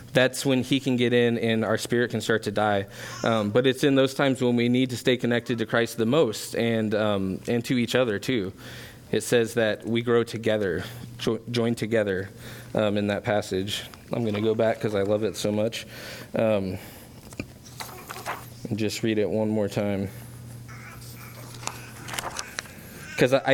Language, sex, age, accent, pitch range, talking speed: English, male, 20-39, American, 110-125 Hz, 175 wpm